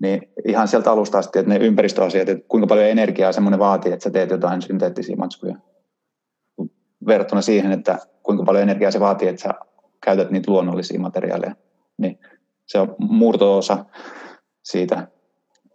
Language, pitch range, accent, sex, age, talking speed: Finnish, 95-105 Hz, native, male, 30-49, 150 wpm